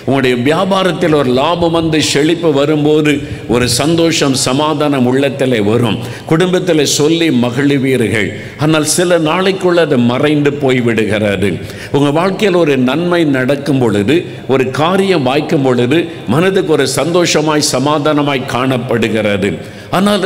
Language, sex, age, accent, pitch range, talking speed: Tamil, male, 50-69, native, 120-165 Hz, 110 wpm